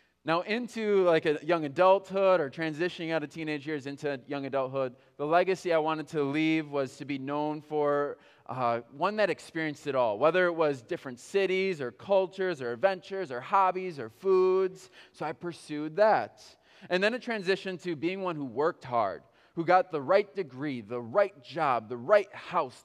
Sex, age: male, 20-39